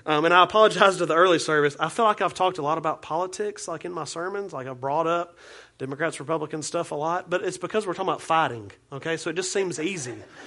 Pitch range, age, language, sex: 150-200 Hz, 30-49, English, male